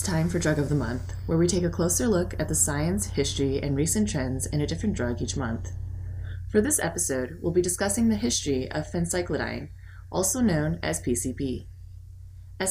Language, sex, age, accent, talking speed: English, female, 20-39, American, 190 wpm